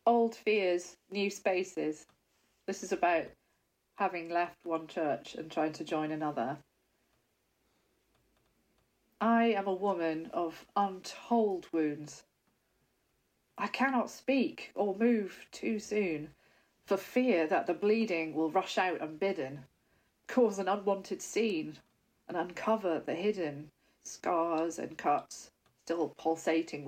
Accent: British